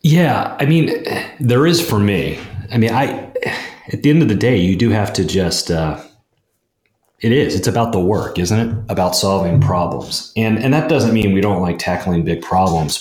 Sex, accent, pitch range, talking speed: male, American, 85-110 Hz, 205 wpm